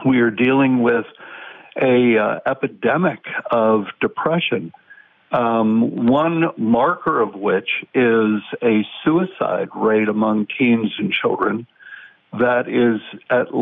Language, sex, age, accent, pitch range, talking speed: English, male, 60-79, American, 110-150 Hz, 110 wpm